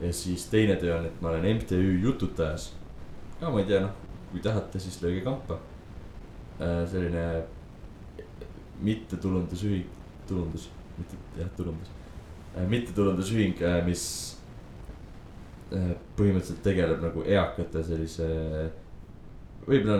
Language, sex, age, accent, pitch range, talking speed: English, male, 20-39, Finnish, 85-100 Hz, 100 wpm